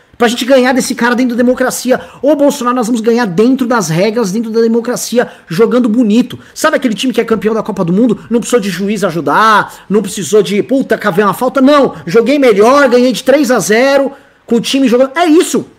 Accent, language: Brazilian, Portuguese